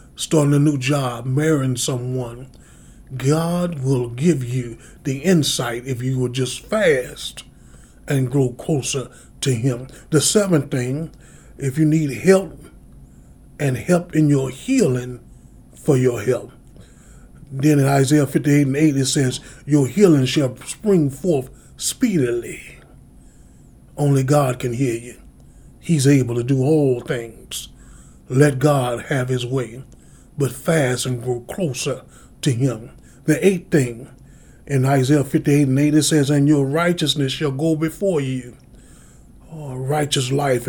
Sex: male